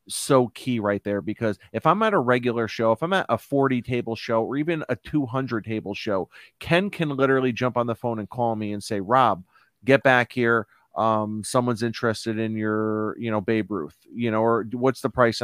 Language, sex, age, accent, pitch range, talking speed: English, male, 30-49, American, 110-125 Hz, 215 wpm